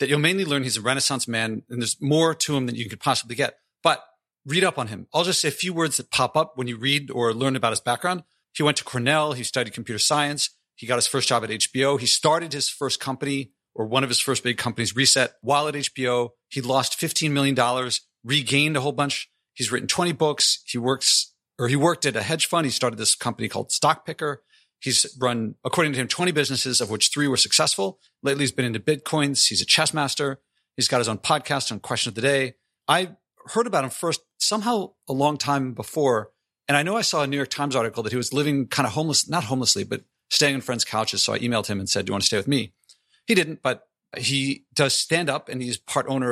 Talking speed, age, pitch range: 240 wpm, 40-59, 120-145 Hz